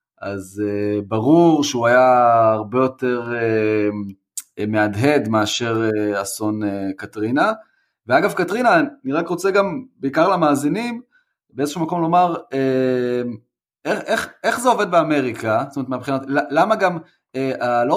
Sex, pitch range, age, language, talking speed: male, 120-170 Hz, 30-49, Hebrew, 110 wpm